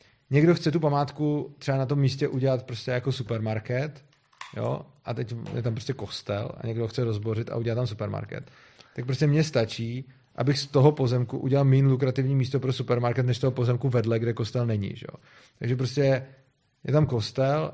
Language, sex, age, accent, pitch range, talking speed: Czech, male, 30-49, native, 125-140 Hz, 185 wpm